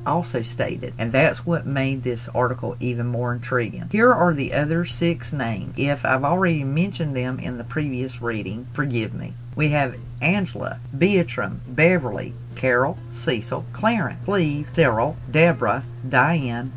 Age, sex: 40-59, female